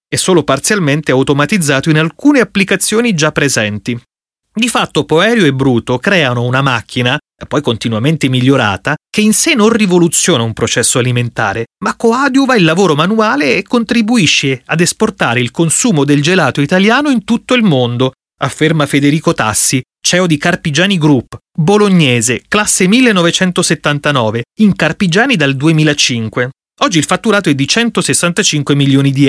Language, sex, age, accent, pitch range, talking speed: Italian, male, 30-49, native, 130-190 Hz, 140 wpm